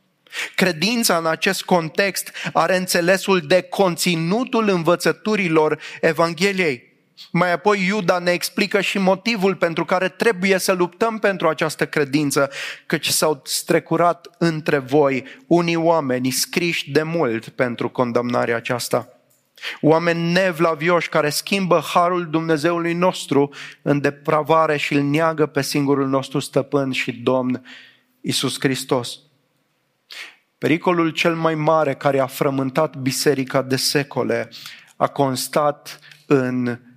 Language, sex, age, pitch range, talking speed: English, male, 30-49, 135-175 Hz, 115 wpm